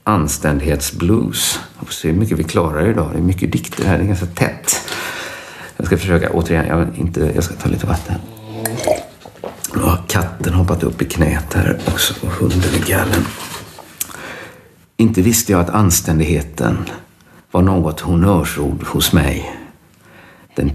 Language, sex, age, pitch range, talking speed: Swedish, male, 50-69, 80-90 Hz, 145 wpm